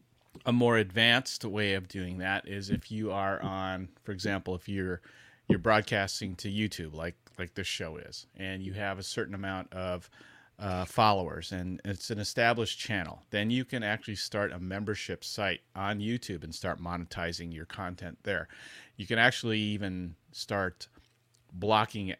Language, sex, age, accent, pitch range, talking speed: English, male, 30-49, American, 90-110 Hz, 165 wpm